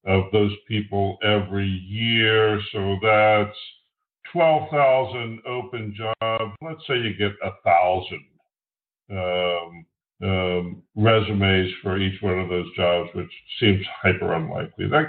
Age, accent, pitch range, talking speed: 50-69, American, 100-125 Hz, 120 wpm